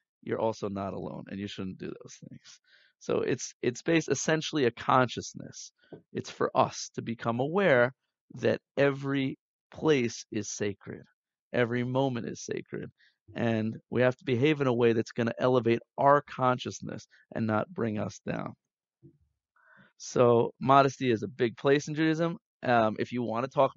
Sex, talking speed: male, 165 wpm